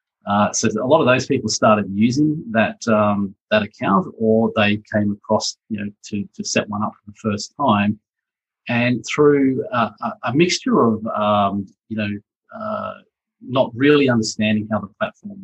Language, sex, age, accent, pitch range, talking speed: English, male, 30-49, Australian, 105-120 Hz, 170 wpm